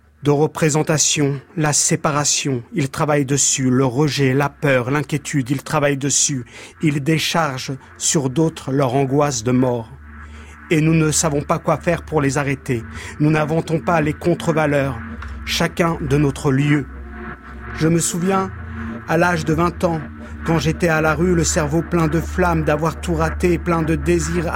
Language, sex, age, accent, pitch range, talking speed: French, male, 50-69, French, 135-175 Hz, 160 wpm